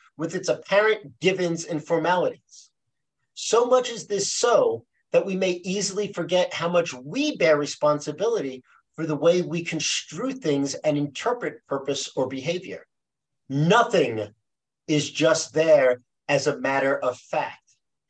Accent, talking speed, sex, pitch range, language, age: American, 135 wpm, male, 140-200 Hz, English, 50-69